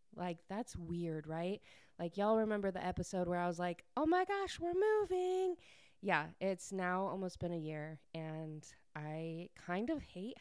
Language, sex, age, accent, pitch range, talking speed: English, female, 20-39, American, 165-220 Hz, 175 wpm